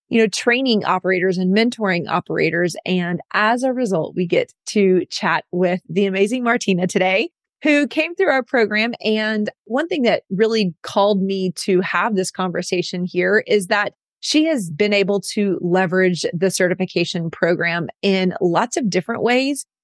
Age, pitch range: 30-49, 180-220 Hz